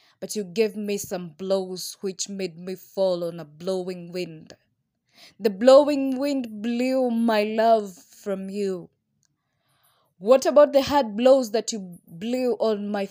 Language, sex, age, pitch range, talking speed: English, female, 20-39, 175-235 Hz, 145 wpm